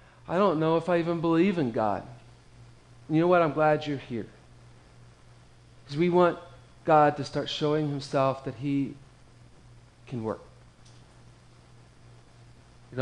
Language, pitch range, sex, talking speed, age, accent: English, 115-140 Hz, male, 135 wpm, 30-49, American